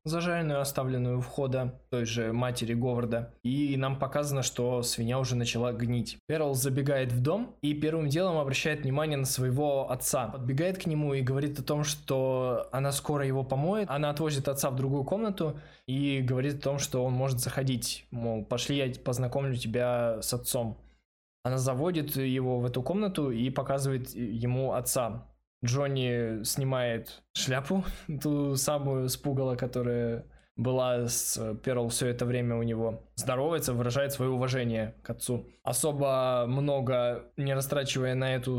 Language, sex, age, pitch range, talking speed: Russian, male, 20-39, 125-145 Hz, 150 wpm